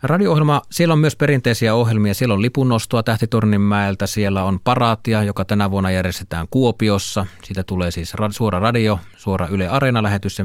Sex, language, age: male, Finnish, 30-49